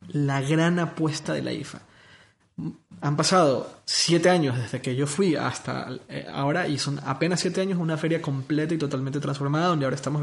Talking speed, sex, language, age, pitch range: 175 wpm, male, Spanish, 20-39, 130-160 Hz